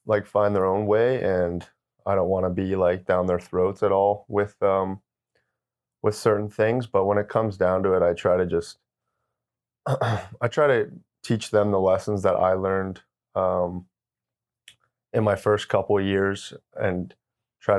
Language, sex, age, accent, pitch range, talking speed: English, male, 30-49, American, 90-100 Hz, 175 wpm